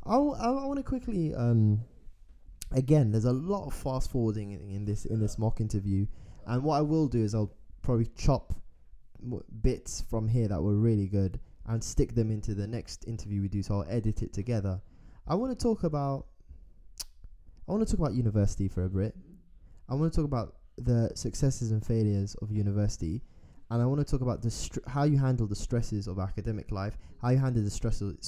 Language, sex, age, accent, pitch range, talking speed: English, male, 10-29, British, 100-125 Hz, 210 wpm